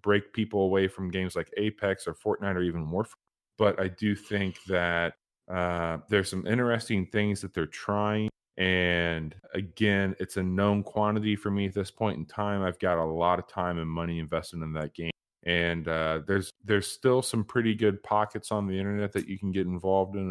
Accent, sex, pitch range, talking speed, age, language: American, male, 85-100 Hz, 200 wpm, 30-49, English